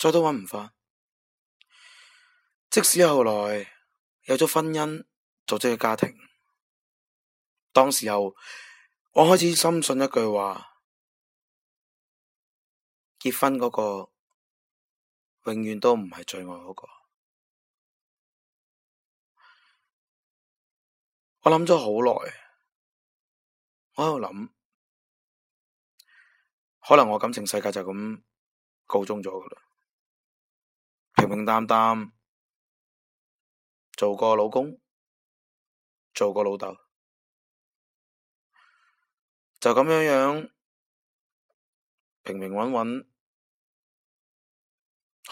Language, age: Chinese, 20-39